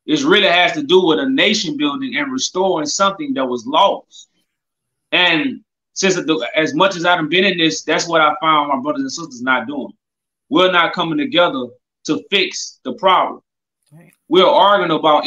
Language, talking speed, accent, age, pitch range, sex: English, 175 wpm, American, 20-39, 165-265 Hz, male